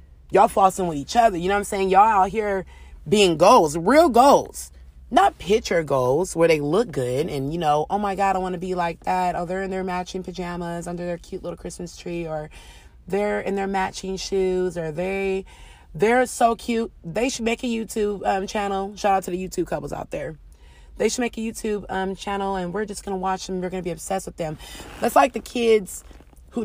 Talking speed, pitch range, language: 225 wpm, 170-205 Hz, English